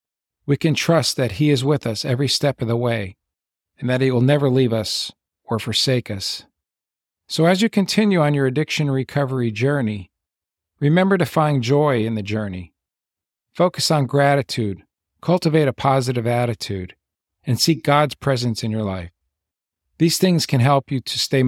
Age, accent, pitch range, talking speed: 50-69, American, 110-150 Hz, 170 wpm